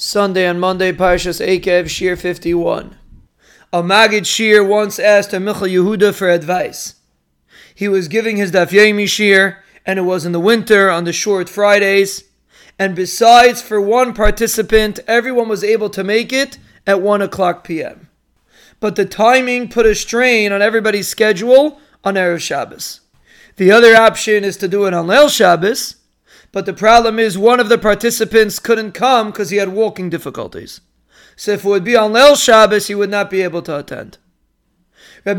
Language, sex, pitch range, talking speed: English, male, 195-230 Hz, 170 wpm